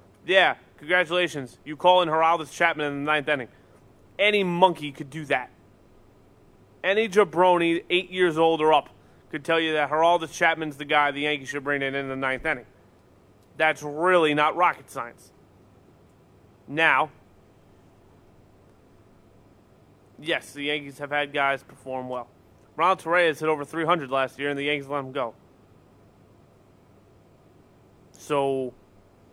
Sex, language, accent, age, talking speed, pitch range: male, English, American, 30-49, 140 wpm, 110-150 Hz